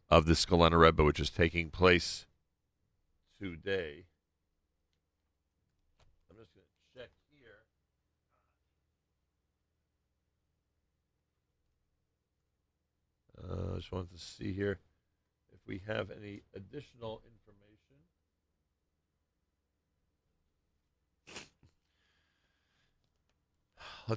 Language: English